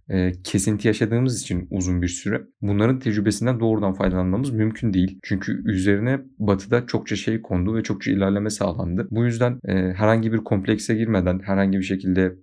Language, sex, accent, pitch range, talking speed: Turkish, male, native, 95-105 Hz, 150 wpm